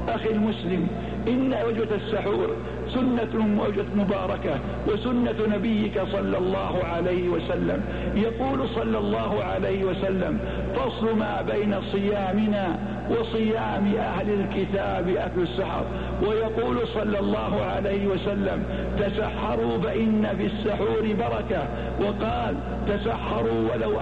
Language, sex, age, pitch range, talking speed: Arabic, male, 60-79, 190-215 Hz, 100 wpm